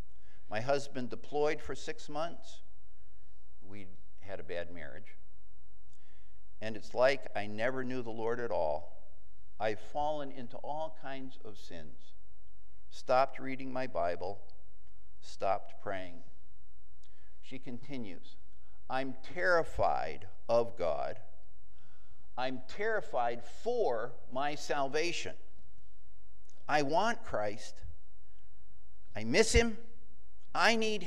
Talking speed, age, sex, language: 100 wpm, 60-79, male, English